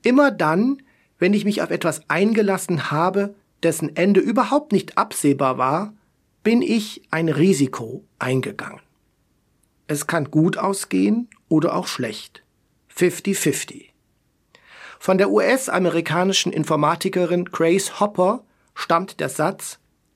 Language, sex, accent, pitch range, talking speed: German, male, German, 165-210 Hz, 110 wpm